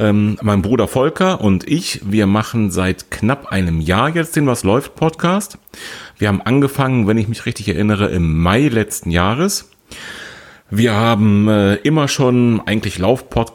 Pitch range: 95-120 Hz